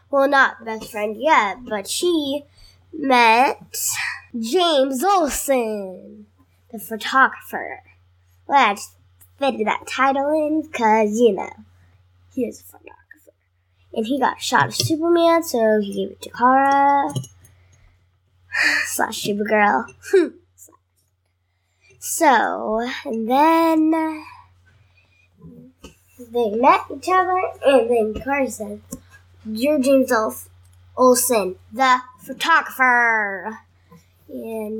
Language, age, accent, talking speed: English, 10-29, American, 100 wpm